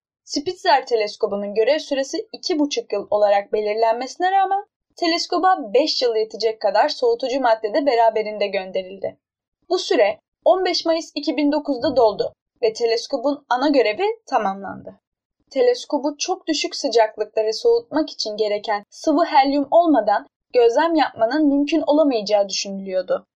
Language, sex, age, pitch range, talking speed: Turkish, female, 10-29, 220-325 Hz, 115 wpm